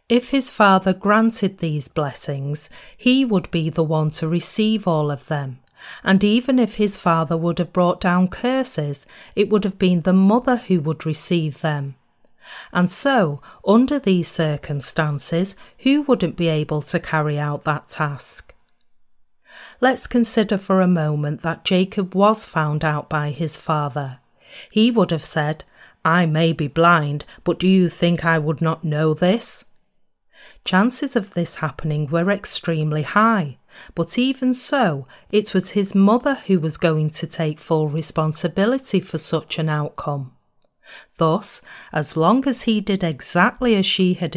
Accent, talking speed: British, 155 wpm